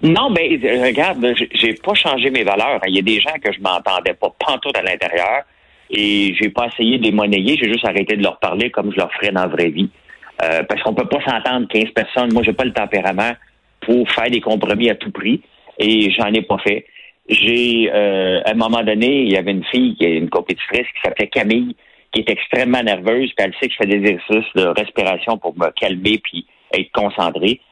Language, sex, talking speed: French, male, 225 wpm